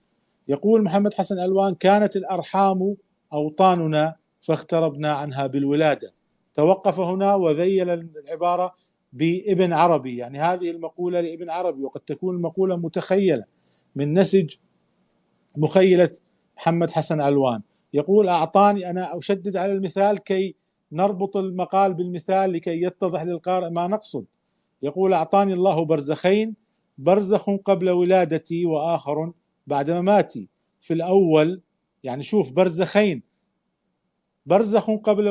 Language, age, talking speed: Arabic, 50-69, 105 wpm